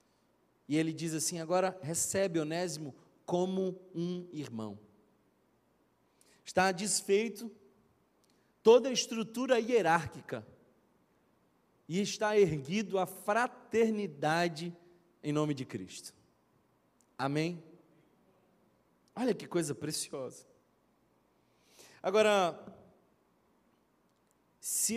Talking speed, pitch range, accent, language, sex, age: 75 wpm, 160-215 Hz, Brazilian, Portuguese, male, 40-59